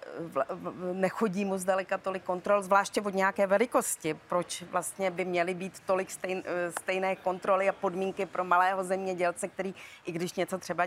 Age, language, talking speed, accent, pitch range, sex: 30-49, Czech, 155 wpm, native, 175-195 Hz, female